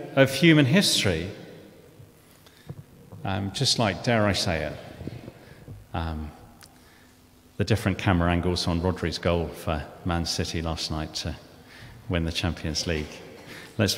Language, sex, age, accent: English, male, 40-59, British